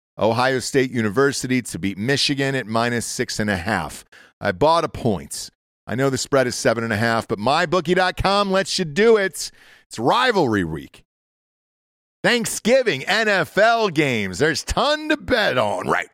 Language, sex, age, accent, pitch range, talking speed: English, male, 40-59, American, 110-165 Hz, 160 wpm